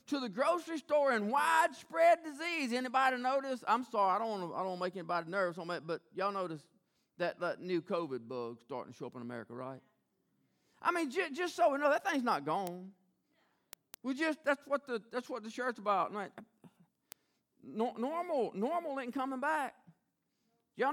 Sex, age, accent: male, 40-59, American